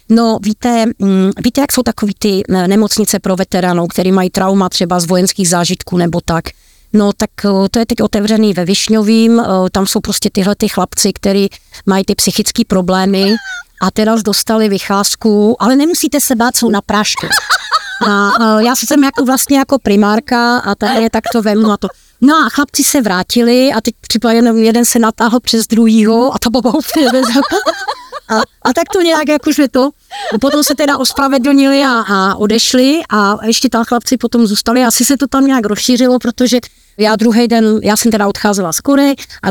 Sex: female